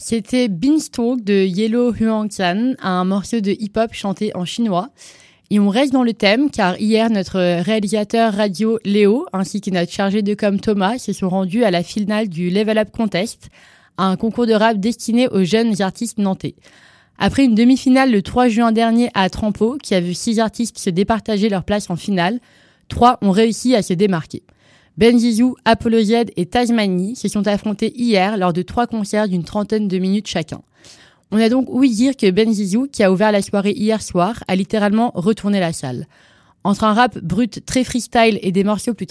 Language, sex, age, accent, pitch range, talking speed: French, female, 20-39, French, 195-230 Hz, 190 wpm